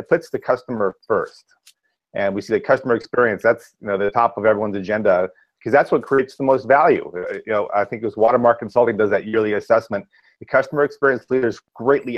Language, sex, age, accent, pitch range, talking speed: English, male, 30-49, American, 105-135 Hz, 210 wpm